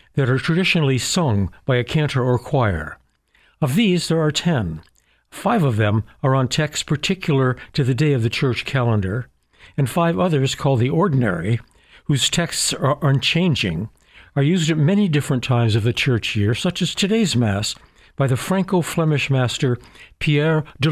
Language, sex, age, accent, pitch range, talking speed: English, male, 60-79, American, 115-155 Hz, 165 wpm